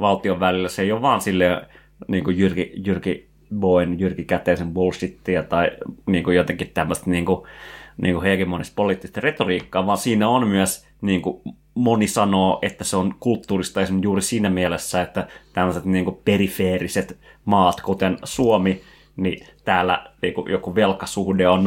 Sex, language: male, Finnish